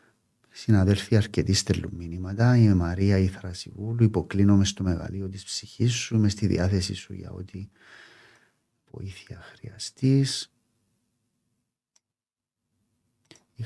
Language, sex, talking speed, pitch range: English, male, 90 wpm, 95-115 Hz